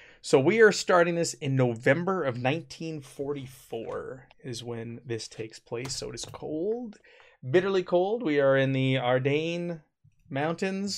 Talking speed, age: 140 wpm, 20-39